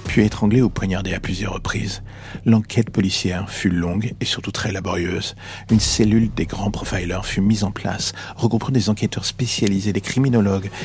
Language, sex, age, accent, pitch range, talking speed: French, male, 50-69, French, 95-110 Hz, 165 wpm